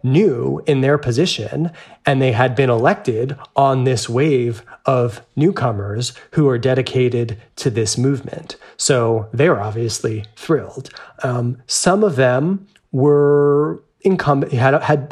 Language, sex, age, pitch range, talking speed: English, male, 30-49, 120-145 Hz, 125 wpm